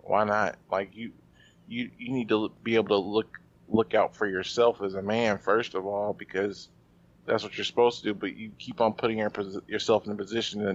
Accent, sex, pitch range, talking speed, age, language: American, male, 100-110 Hz, 225 wpm, 20-39, English